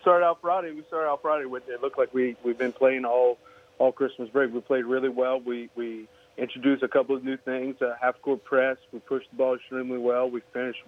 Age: 30-49